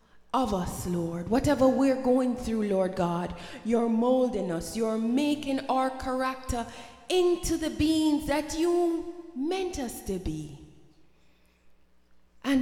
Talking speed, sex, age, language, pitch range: 120 wpm, female, 20-39, English, 220-300 Hz